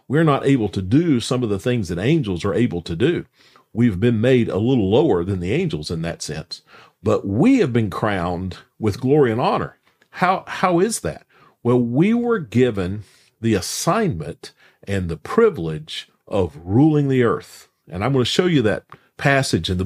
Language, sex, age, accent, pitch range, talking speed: English, male, 40-59, American, 100-145 Hz, 190 wpm